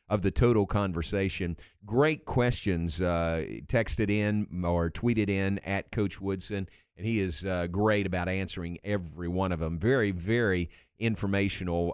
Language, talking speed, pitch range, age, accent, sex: English, 145 wpm, 95-130 Hz, 50-69, American, male